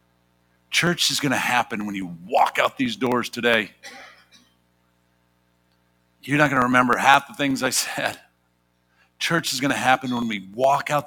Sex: male